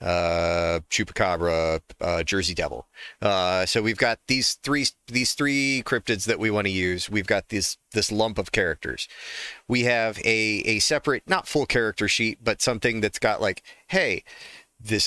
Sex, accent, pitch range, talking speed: male, American, 95-130 Hz, 165 wpm